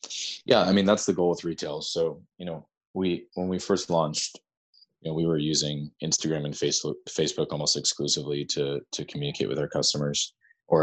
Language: English